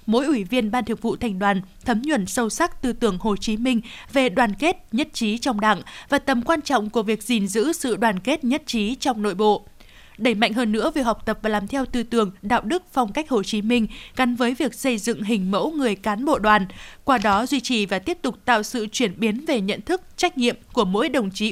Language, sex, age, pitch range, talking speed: Vietnamese, female, 20-39, 215-265 Hz, 250 wpm